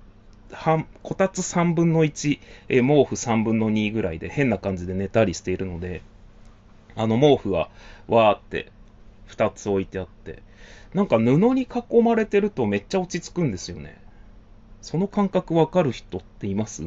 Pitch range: 100-135 Hz